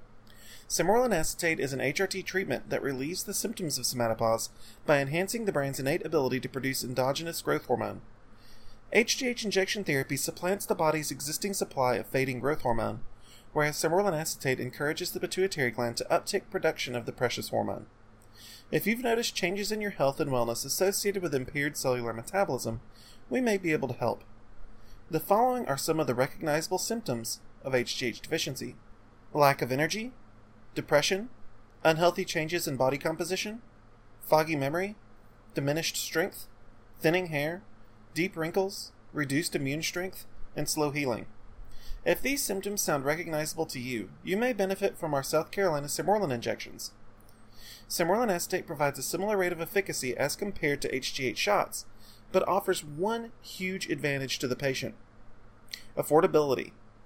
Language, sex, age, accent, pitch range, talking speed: English, male, 30-49, American, 115-180 Hz, 150 wpm